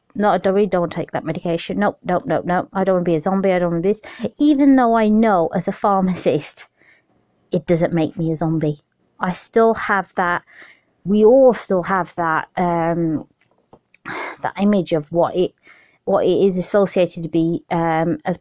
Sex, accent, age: female, British, 20-39